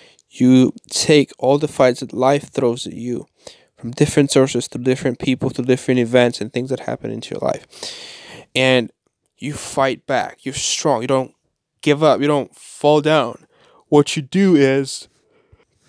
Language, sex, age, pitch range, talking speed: English, male, 20-39, 120-145 Hz, 165 wpm